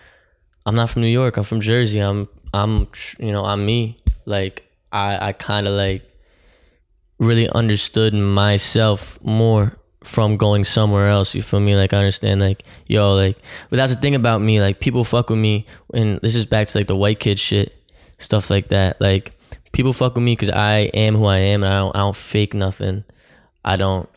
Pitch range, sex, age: 95-105 Hz, male, 10-29